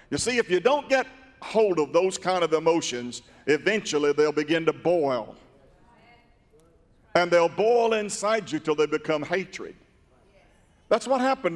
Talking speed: 150 wpm